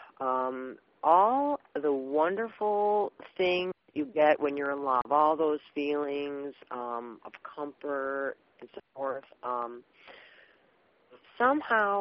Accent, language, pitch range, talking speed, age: American, English, 130-185 Hz, 110 wpm, 40-59